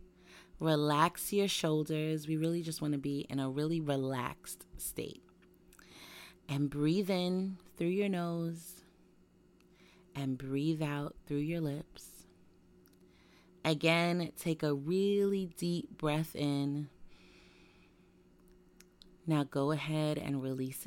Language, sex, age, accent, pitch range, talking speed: English, female, 30-49, American, 135-175 Hz, 110 wpm